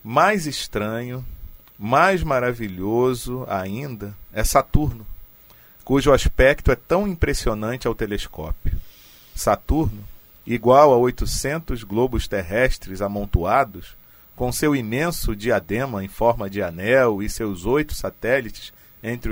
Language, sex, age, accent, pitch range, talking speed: Portuguese, male, 40-59, Brazilian, 95-130 Hz, 105 wpm